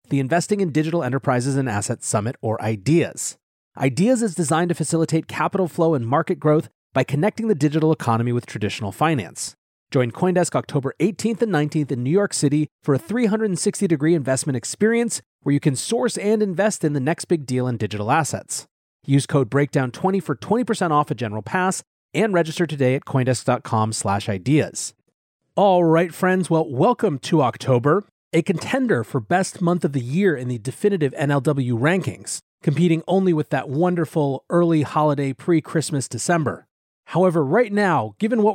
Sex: male